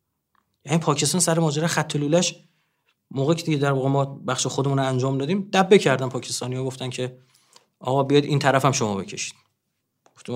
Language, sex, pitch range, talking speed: Persian, male, 135-195 Hz, 155 wpm